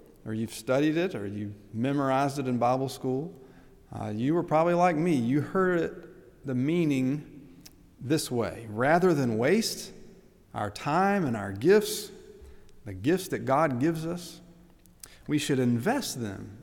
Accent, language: American, English